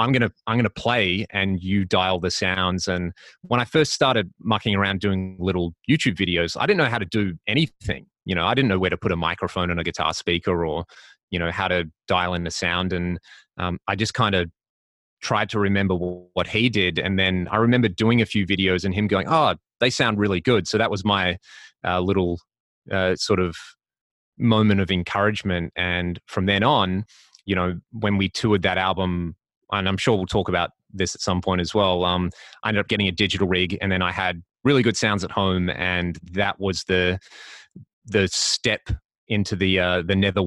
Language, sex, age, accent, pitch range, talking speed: English, male, 30-49, Australian, 90-110 Hz, 210 wpm